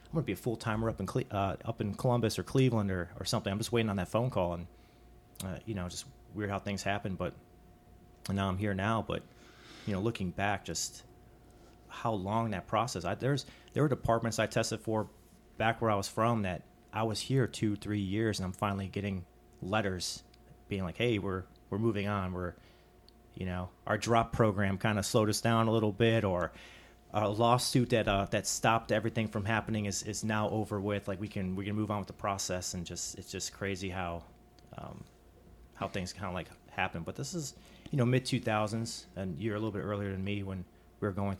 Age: 30-49